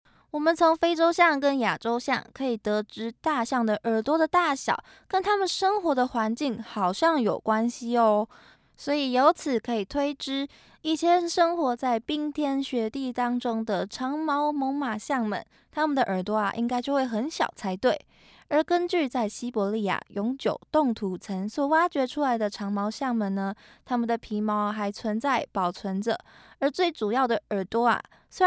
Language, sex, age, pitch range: Chinese, female, 20-39, 215-285 Hz